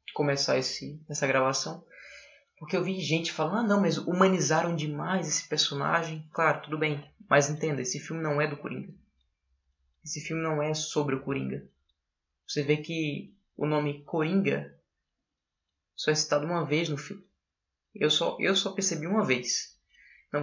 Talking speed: 160 wpm